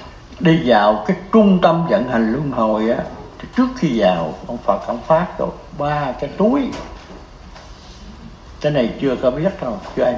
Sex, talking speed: male, 170 wpm